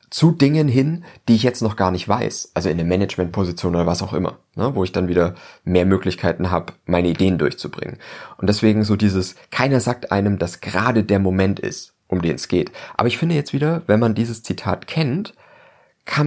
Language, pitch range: German, 95-120 Hz